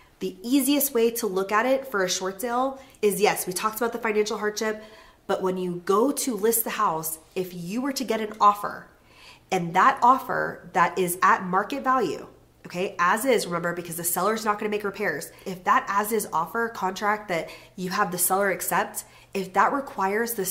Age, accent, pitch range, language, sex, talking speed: 30-49, American, 185-230 Hz, English, female, 205 wpm